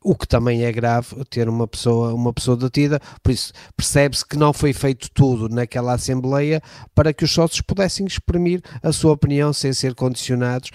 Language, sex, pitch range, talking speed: Portuguese, male, 115-135 Hz, 185 wpm